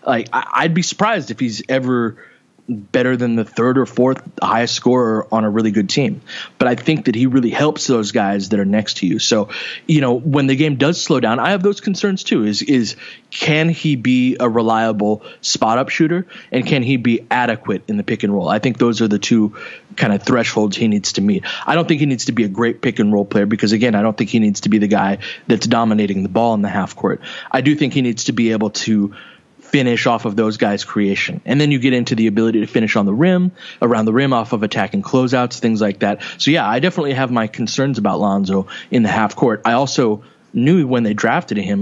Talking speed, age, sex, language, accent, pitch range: 245 wpm, 20-39, male, English, American, 110-135 Hz